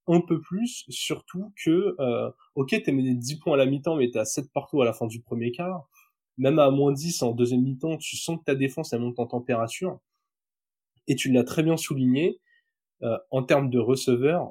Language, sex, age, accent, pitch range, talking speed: French, male, 20-39, French, 120-155 Hz, 210 wpm